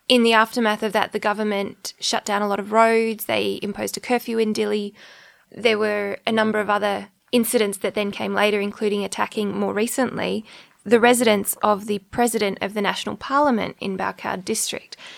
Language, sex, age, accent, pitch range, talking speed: English, female, 20-39, Australian, 205-230 Hz, 180 wpm